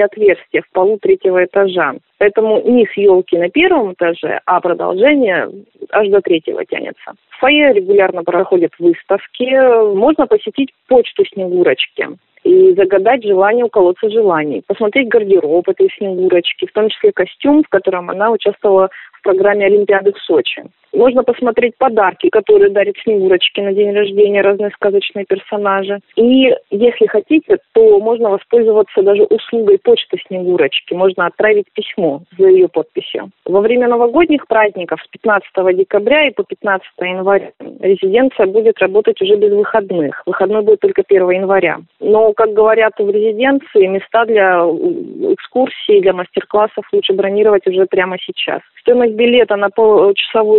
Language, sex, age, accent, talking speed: Russian, female, 20-39, native, 140 wpm